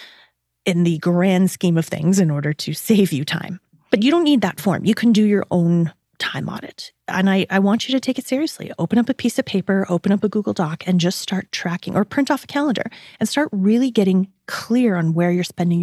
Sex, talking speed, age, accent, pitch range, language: female, 240 wpm, 30-49, American, 165-225 Hz, English